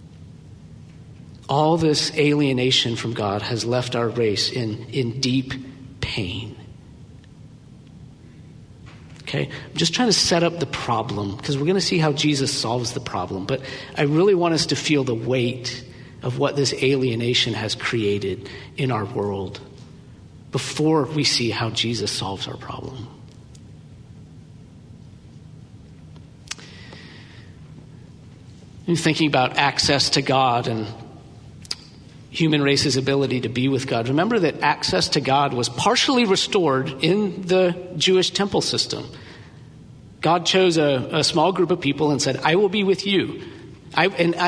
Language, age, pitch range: English, 50-69, 130-180 Hz